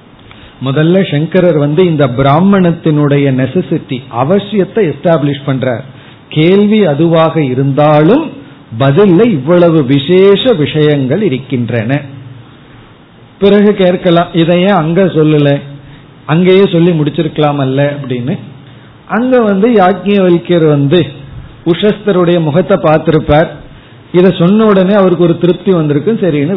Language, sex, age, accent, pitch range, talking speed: Tamil, male, 40-59, native, 140-185 Hz, 95 wpm